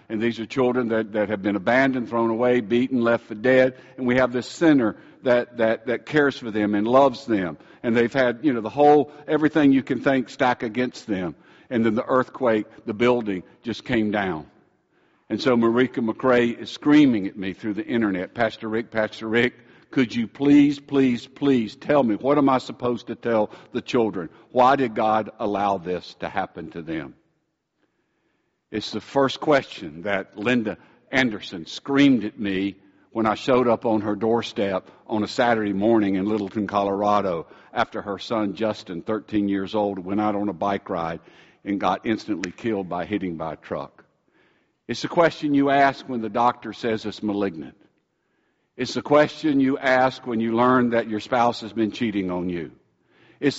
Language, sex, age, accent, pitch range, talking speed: English, male, 60-79, American, 105-130 Hz, 185 wpm